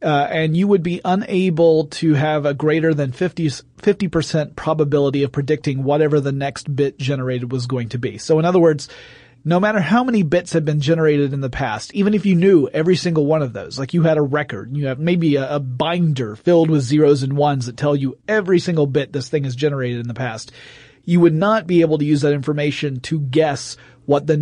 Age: 30-49